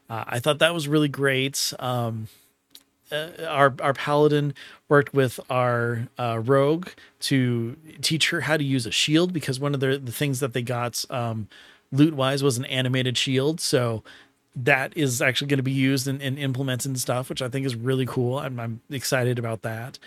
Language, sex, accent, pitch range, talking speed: English, male, American, 125-150 Hz, 190 wpm